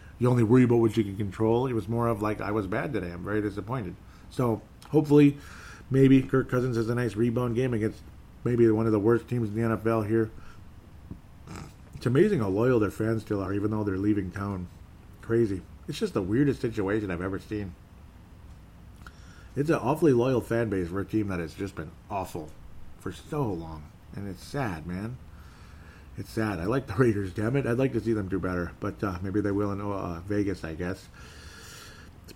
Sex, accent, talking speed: male, American, 205 wpm